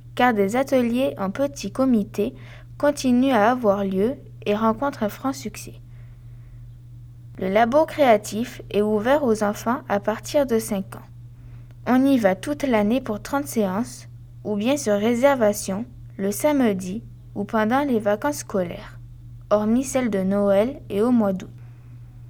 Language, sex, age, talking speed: French, female, 20-39, 145 wpm